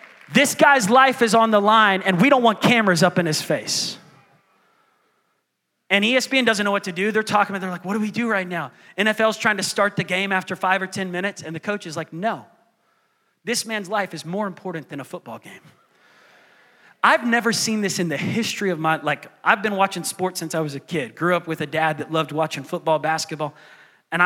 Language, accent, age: English, American, 30-49